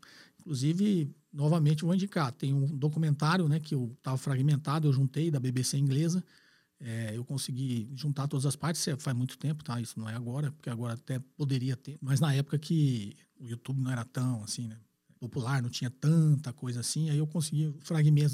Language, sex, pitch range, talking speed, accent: Portuguese, male, 135-170 Hz, 190 wpm, Brazilian